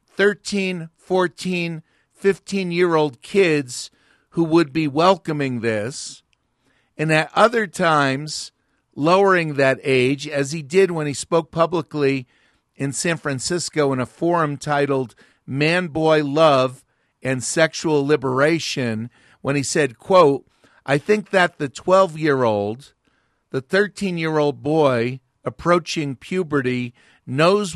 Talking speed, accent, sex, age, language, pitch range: 110 wpm, American, male, 50-69, English, 135-175 Hz